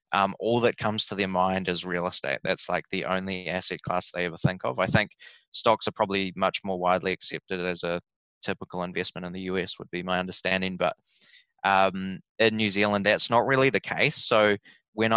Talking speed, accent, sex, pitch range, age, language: 205 wpm, Australian, male, 90-105 Hz, 20-39, English